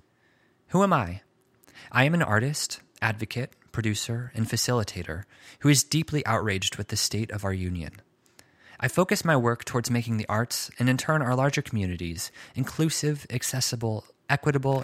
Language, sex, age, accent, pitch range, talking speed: English, male, 20-39, American, 100-130 Hz, 155 wpm